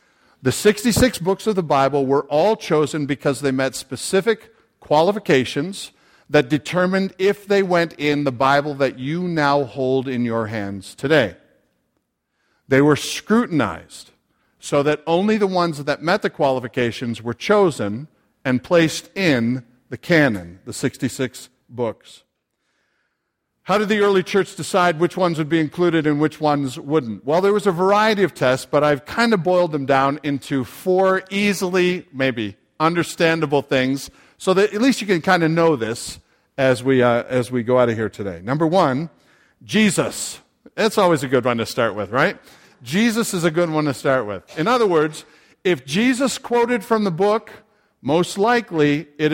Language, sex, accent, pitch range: English, male, American, 135-190 Hz